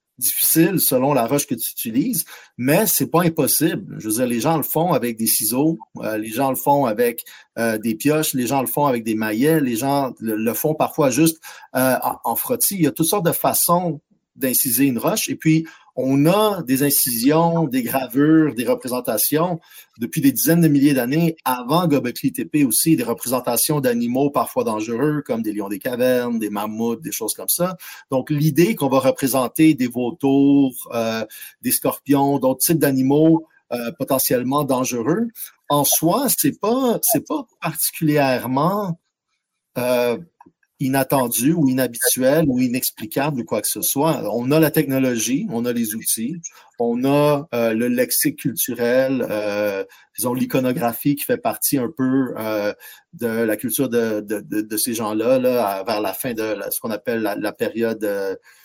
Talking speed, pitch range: 170 wpm, 120-160 Hz